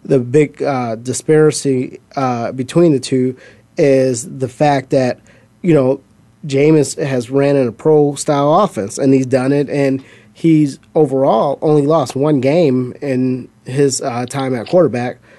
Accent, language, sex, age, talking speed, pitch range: American, English, male, 30-49, 150 wpm, 125-150 Hz